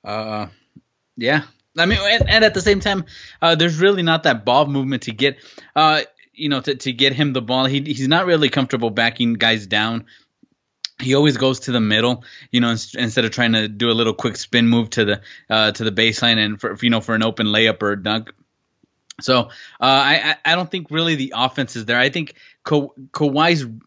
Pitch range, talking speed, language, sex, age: 115-135 Hz, 220 wpm, English, male, 20-39